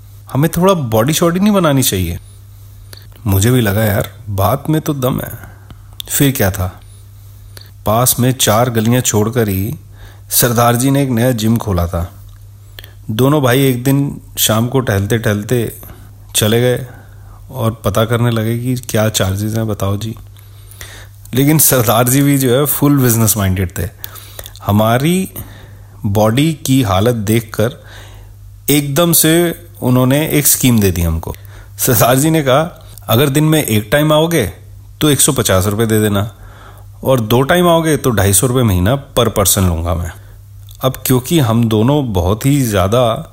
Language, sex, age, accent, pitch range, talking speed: Hindi, male, 30-49, native, 100-130 Hz, 150 wpm